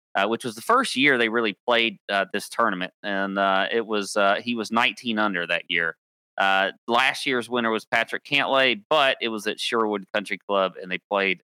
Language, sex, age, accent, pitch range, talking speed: English, male, 30-49, American, 100-135 Hz, 210 wpm